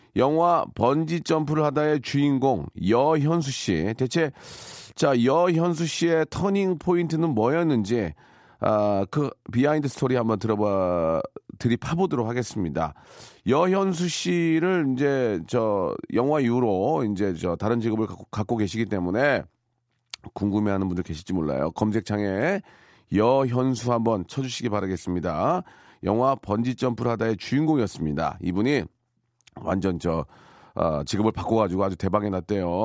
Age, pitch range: 40-59, 100-140 Hz